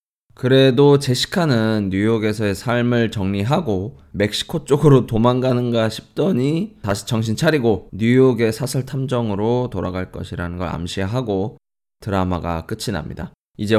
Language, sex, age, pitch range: Korean, male, 20-39, 95-130 Hz